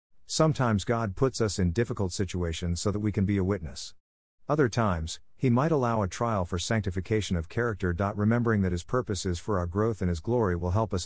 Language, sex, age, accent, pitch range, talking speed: English, male, 50-69, American, 90-115 Hz, 210 wpm